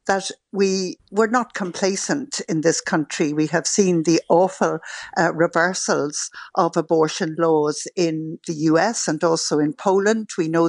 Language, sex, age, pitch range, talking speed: English, female, 60-79, 160-200 Hz, 150 wpm